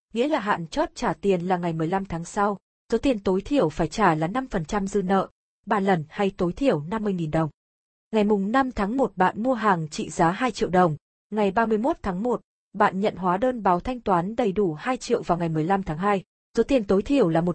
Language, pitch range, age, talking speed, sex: Vietnamese, 180-230 Hz, 20-39, 225 wpm, female